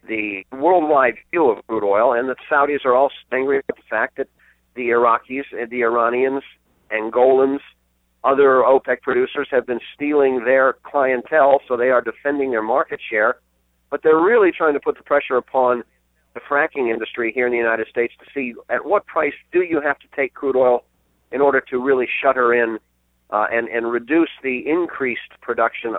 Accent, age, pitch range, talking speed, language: American, 40-59, 110-135 Hz, 185 wpm, English